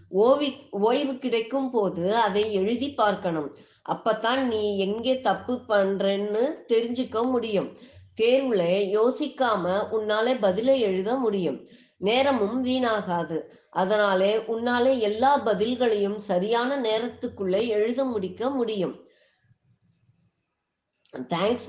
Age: 20-39